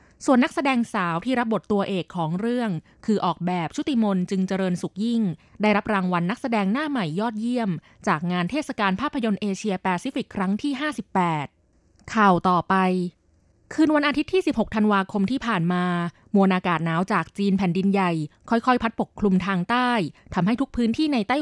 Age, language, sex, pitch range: 20-39, Thai, female, 185-240 Hz